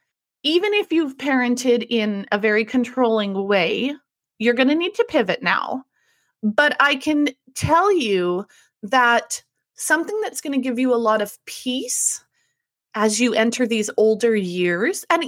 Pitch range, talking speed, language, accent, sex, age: 225-325 Hz, 155 wpm, English, American, female, 30-49